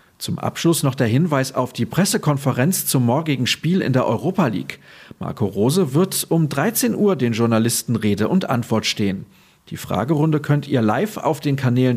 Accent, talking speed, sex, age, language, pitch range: German, 175 wpm, male, 40-59, German, 115-170 Hz